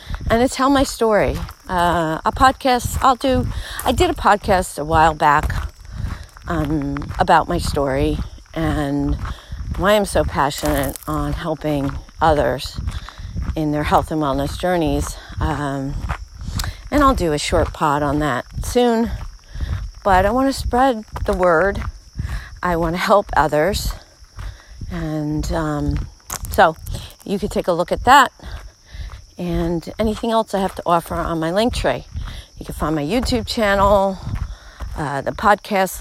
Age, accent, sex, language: 40-59, American, female, English